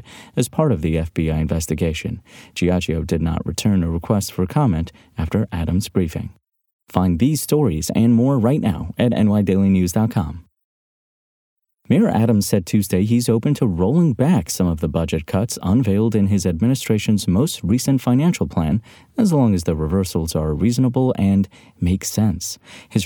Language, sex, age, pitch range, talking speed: English, male, 30-49, 85-120 Hz, 155 wpm